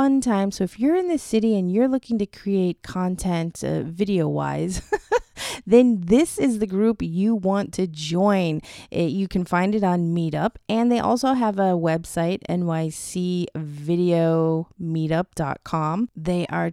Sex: female